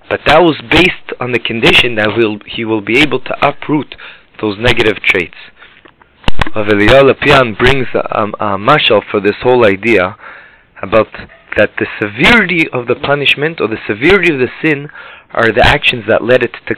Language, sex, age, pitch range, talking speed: English, male, 30-49, 115-150 Hz, 170 wpm